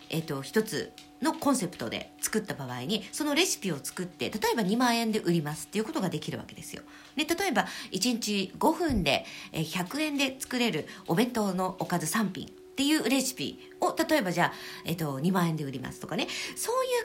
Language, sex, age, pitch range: Japanese, female, 50-69, 160-240 Hz